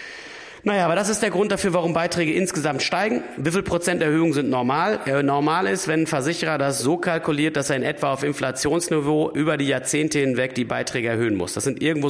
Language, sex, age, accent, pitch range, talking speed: German, male, 40-59, German, 130-170 Hz, 205 wpm